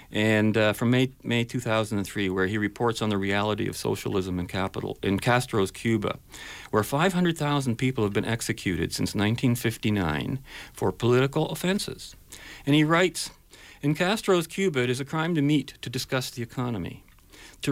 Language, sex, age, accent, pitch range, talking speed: English, male, 50-69, American, 105-150 Hz, 175 wpm